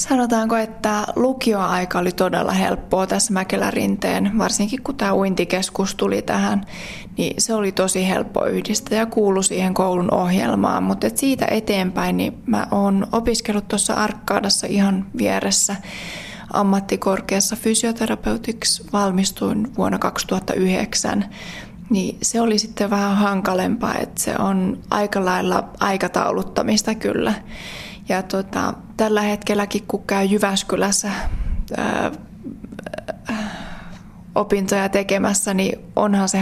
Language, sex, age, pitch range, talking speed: Finnish, female, 20-39, 185-215 Hz, 110 wpm